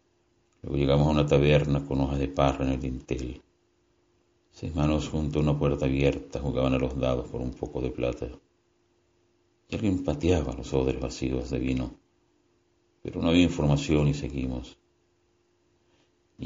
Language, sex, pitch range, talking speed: Spanish, male, 70-85 Hz, 155 wpm